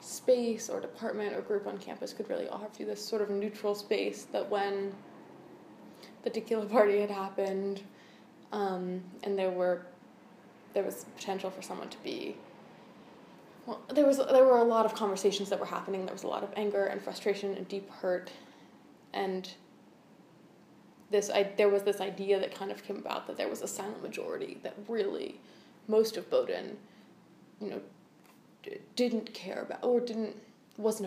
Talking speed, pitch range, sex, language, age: 170 wpm, 195-230 Hz, female, English, 20-39